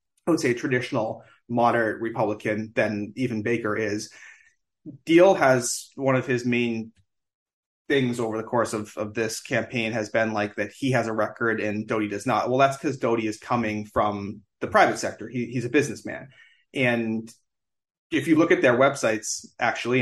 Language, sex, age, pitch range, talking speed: English, male, 30-49, 110-130 Hz, 175 wpm